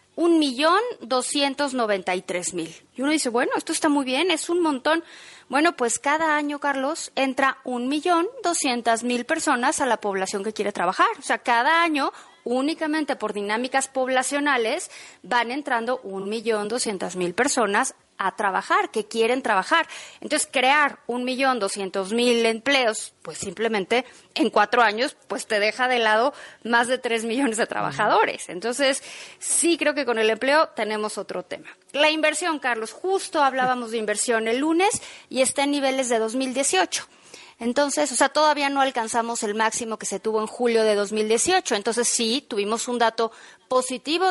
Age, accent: 30-49, Mexican